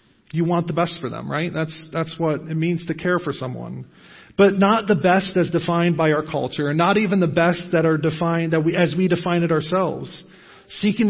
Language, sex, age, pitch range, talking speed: English, male, 40-59, 145-180 Hz, 220 wpm